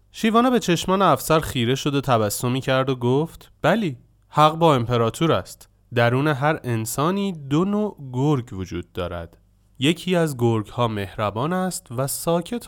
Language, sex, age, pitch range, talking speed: Persian, male, 30-49, 110-175 Hz, 145 wpm